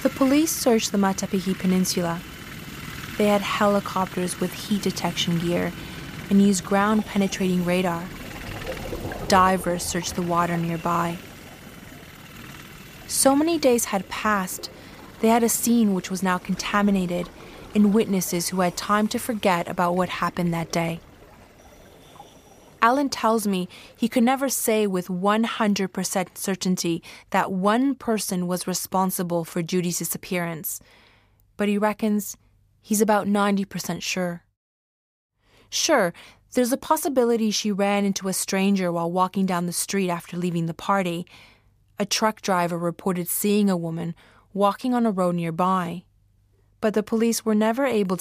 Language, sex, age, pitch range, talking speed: English, female, 20-39, 175-210 Hz, 135 wpm